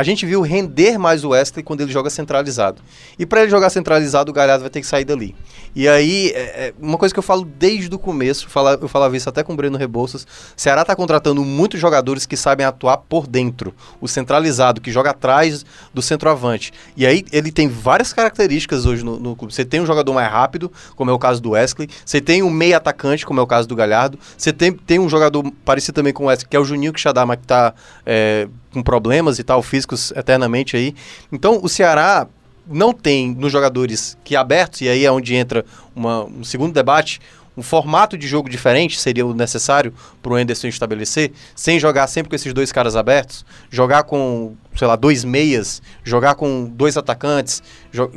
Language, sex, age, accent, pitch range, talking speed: Portuguese, male, 20-39, Brazilian, 125-160 Hz, 205 wpm